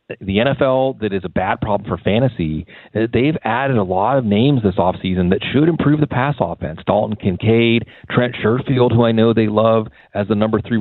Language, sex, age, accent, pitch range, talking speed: English, male, 40-59, American, 95-120 Hz, 200 wpm